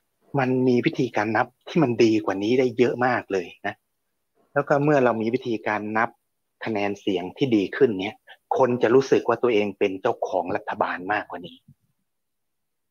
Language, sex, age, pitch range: Thai, male, 30-49, 110-140 Hz